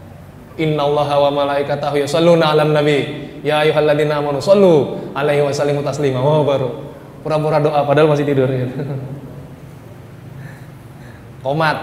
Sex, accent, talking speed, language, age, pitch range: male, native, 115 wpm, Indonesian, 20-39, 140-185 Hz